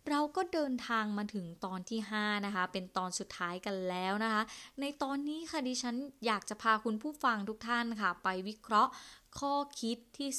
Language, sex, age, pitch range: Thai, female, 20-39, 190-245 Hz